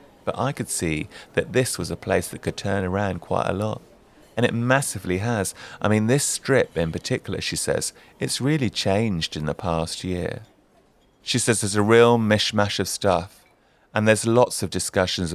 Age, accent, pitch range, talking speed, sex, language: 30-49, British, 90-120 Hz, 190 wpm, male, English